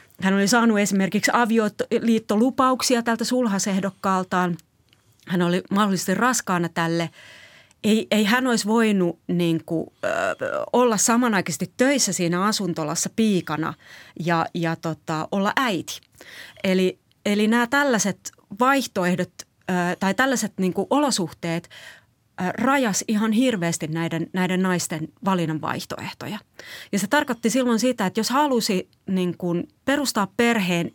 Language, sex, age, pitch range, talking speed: Finnish, female, 30-49, 175-235 Hz, 110 wpm